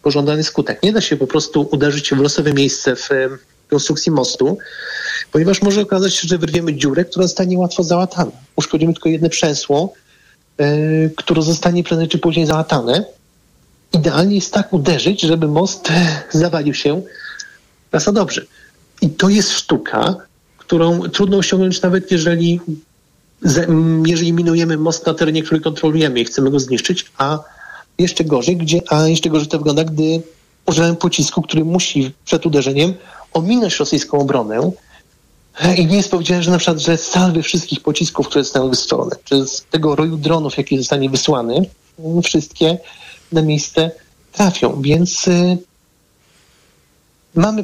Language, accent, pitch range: Polish, native, 150-175 Hz